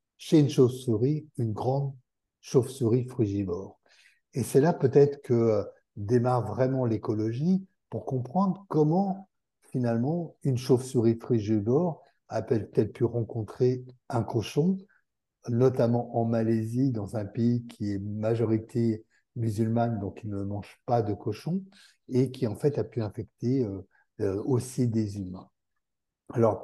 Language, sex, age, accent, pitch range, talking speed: French, male, 60-79, French, 110-130 Hz, 125 wpm